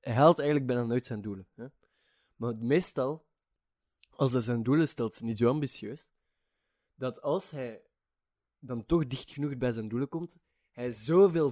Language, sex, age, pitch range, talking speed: Dutch, male, 20-39, 115-145 Hz, 170 wpm